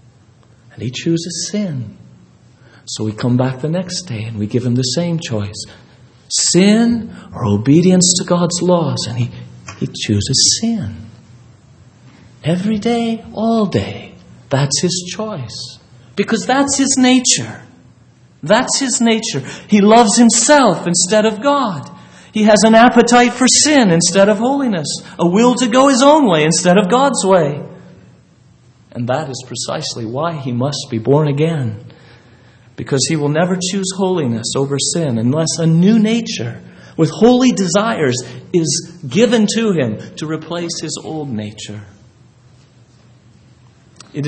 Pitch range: 120-185 Hz